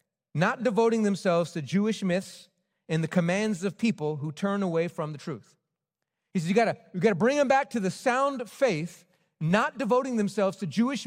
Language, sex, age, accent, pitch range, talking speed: English, male, 40-59, American, 170-220 Hz, 185 wpm